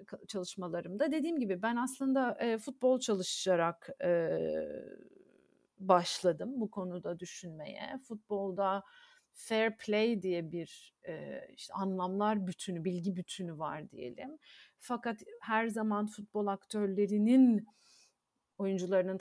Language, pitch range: Turkish, 180-235 Hz